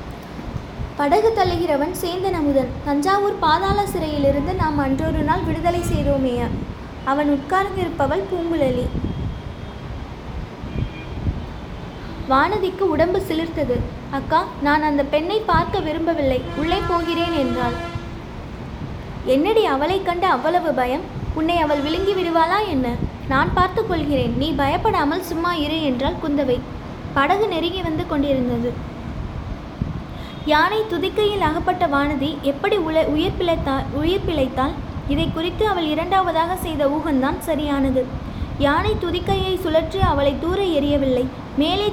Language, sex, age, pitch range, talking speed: Tamil, female, 20-39, 285-365 Hz, 105 wpm